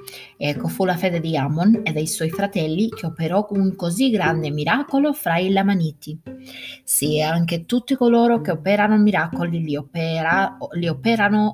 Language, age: Italian, 30-49